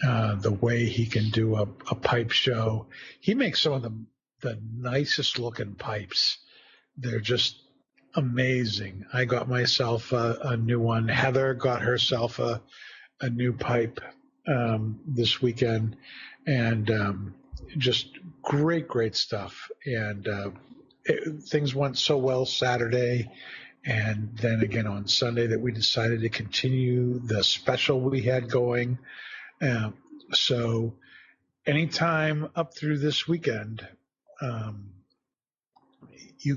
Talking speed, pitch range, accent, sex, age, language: 125 wpm, 115-135 Hz, American, male, 50-69, English